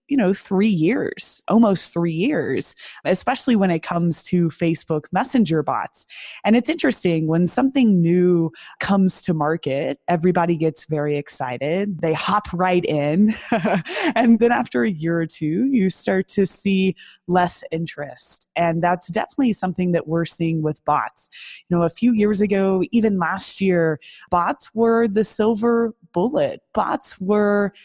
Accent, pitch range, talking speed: American, 165-215 Hz, 150 wpm